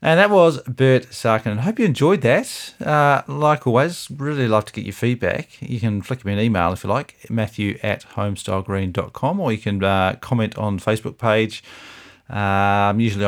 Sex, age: male, 40-59